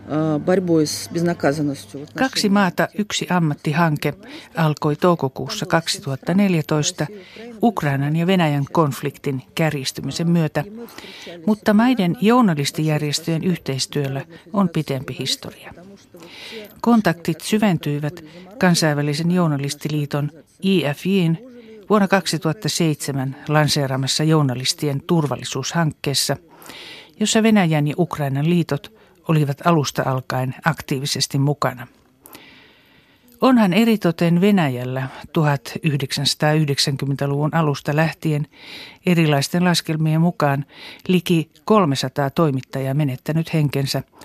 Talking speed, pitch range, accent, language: 75 wpm, 140-180 Hz, native, Finnish